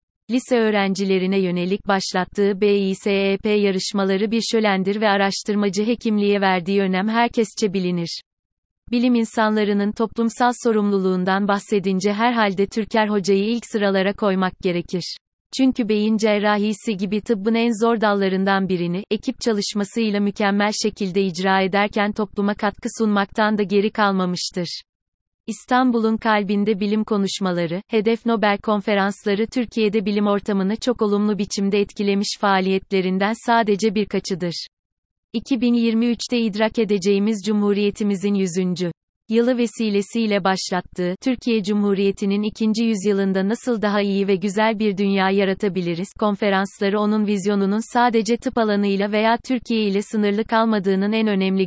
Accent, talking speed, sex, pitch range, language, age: native, 115 wpm, female, 195-220 Hz, Turkish, 30-49